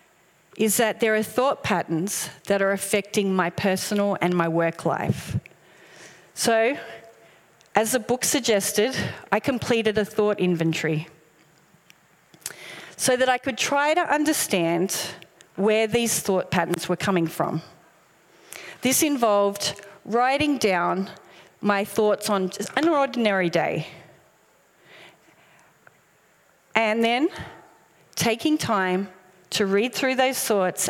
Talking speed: 115 wpm